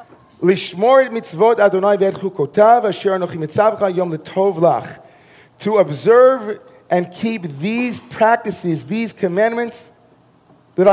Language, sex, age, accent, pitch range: English, male, 40-59, American, 155-215 Hz